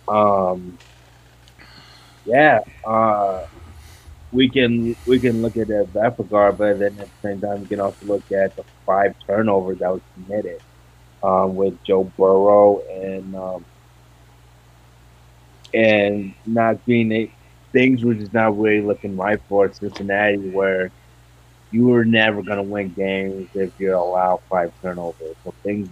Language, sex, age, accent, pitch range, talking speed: English, male, 30-49, American, 90-100 Hz, 150 wpm